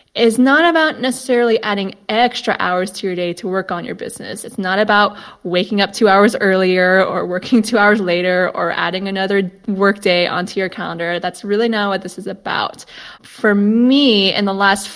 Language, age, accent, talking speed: English, 20-39, American, 195 wpm